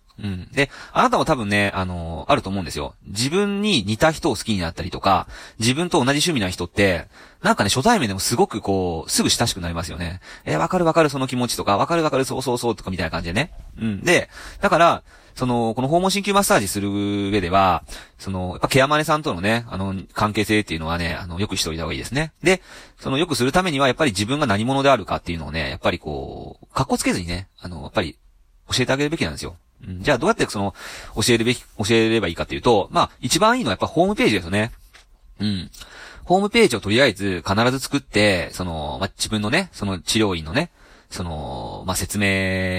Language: Japanese